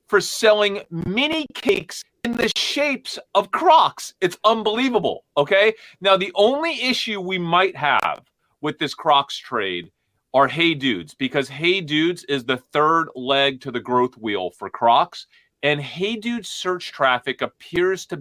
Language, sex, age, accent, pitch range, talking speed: English, male, 30-49, American, 140-215 Hz, 150 wpm